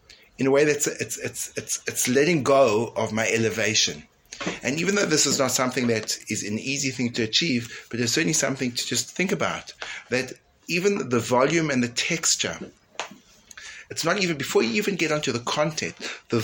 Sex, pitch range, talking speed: male, 105-140 Hz, 195 wpm